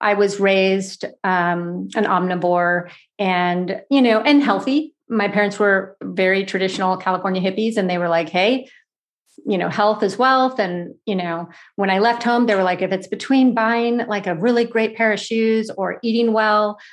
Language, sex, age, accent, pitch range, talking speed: English, female, 40-59, American, 185-215 Hz, 185 wpm